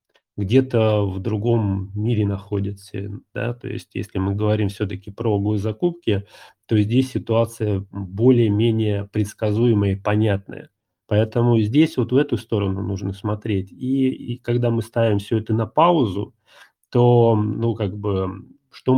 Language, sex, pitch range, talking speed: Russian, male, 100-125 Hz, 135 wpm